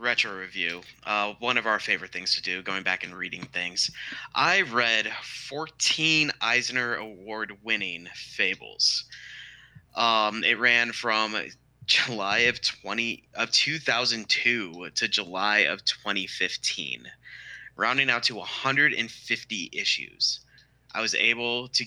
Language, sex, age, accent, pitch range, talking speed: English, male, 20-39, American, 100-125 Hz, 120 wpm